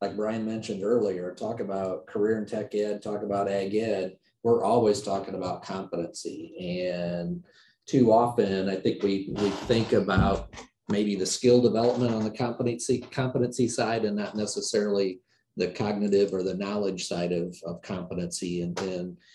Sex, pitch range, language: male, 95-115 Hz, English